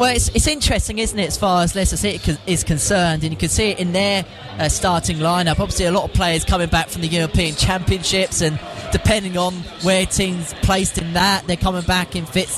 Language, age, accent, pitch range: English, 20-39, British, 175-200 Hz